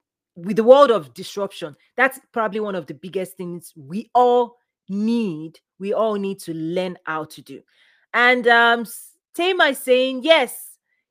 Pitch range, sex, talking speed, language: 190-255 Hz, female, 155 wpm, English